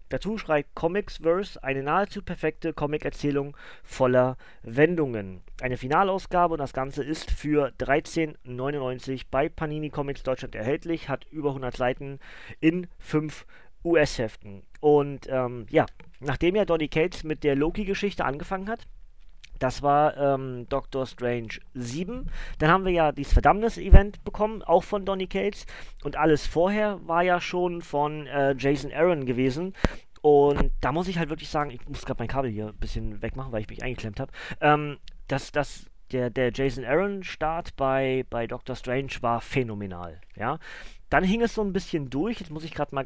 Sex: male